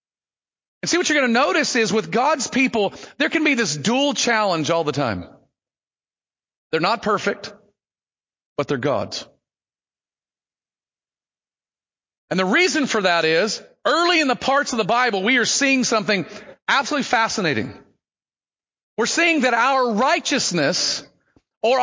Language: English